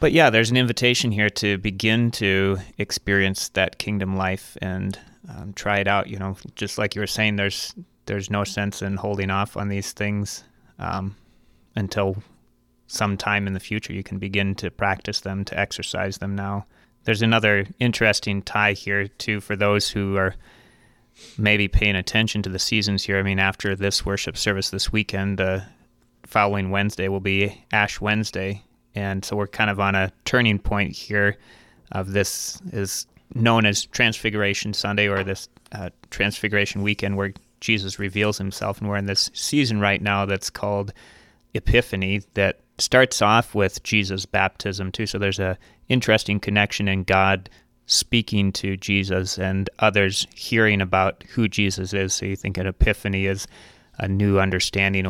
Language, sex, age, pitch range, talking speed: English, male, 30-49, 95-105 Hz, 170 wpm